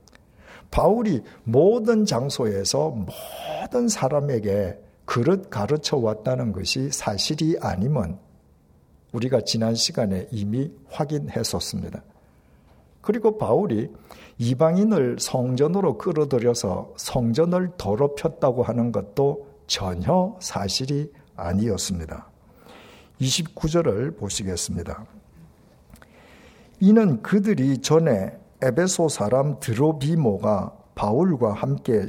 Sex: male